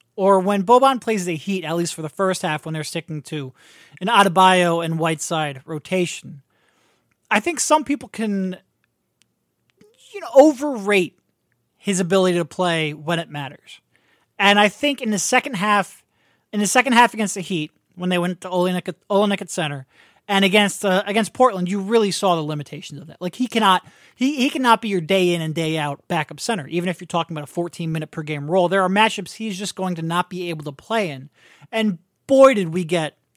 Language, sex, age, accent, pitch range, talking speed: English, male, 30-49, American, 170-215 Hz, 205 wpm